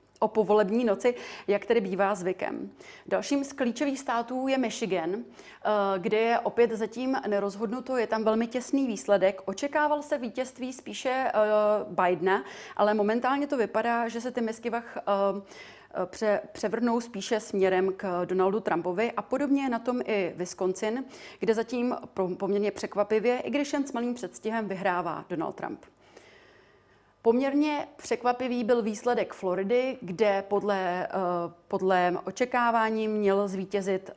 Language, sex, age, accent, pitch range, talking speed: Czech, female, 30-49, native, 195-235 Hz, 135 wpm